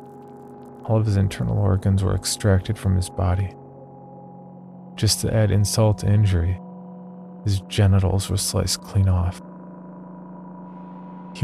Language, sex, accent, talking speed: English, male, American, 120 wpm